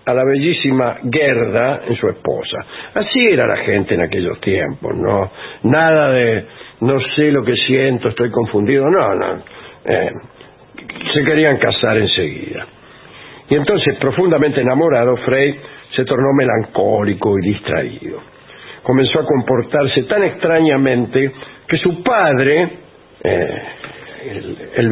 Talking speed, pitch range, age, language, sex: 125 wpm, 125-155 Hz, 60-79, English, male